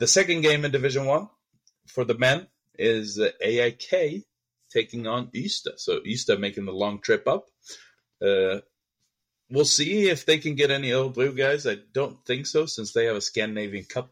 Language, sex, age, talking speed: English, male, 30-49, 180 wpm